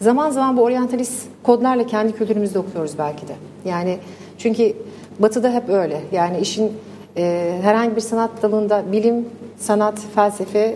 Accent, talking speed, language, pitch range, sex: Turkish, 140 wpm, English, 200-250 Hz, female